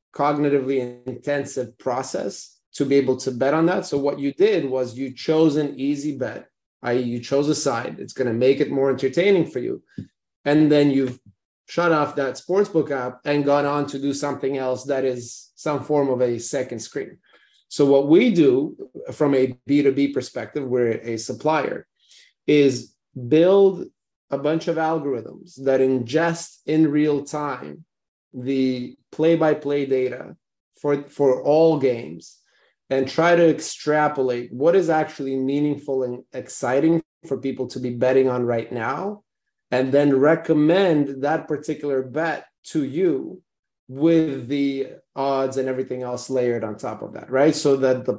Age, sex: 30-49, male